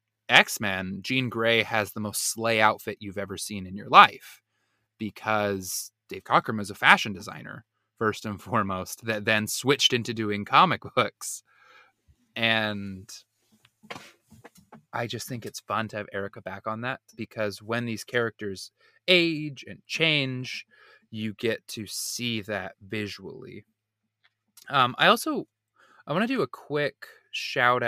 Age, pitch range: 20-39, 105-135 Hz